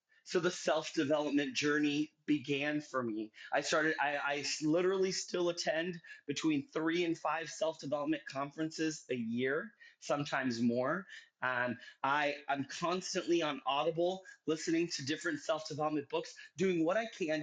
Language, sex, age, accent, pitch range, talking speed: English, male, 30-49, American, 150-210 Hz, 140 wpm